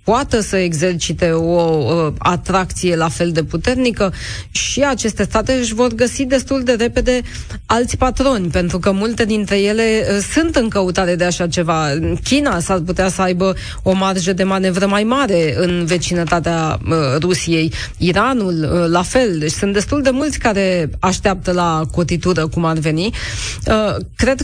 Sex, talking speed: female, 150 wpm